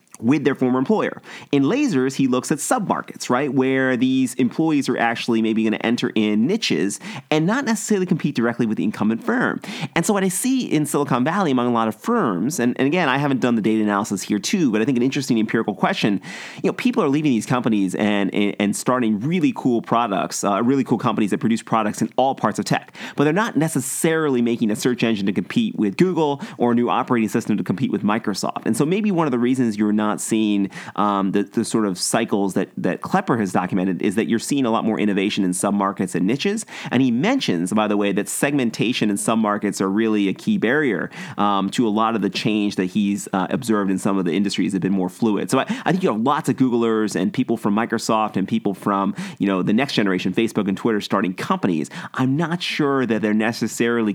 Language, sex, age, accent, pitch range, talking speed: English, male, 30-49, American, 105-135 Hz, 235 wpm